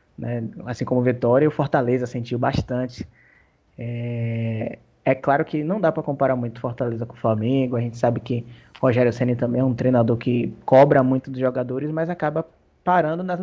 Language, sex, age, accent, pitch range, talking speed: Portuguese, male, 20-39, Brazilian, 125-165 Hz, 185 wpm